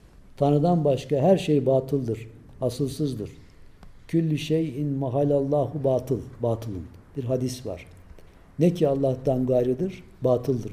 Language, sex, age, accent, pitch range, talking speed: Turkish, male, 60-79, native, 115-165 Hz, 105 wpm